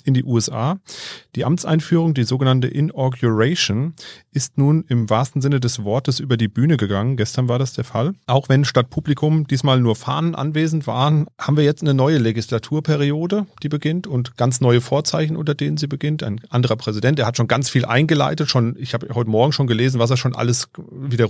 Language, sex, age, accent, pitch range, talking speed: German, male, 40-59, German, 115-145 Hz, 195 wpm